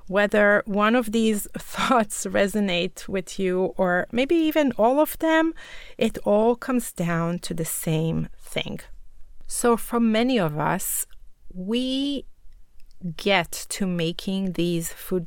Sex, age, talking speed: female, 30-49, 130 wpm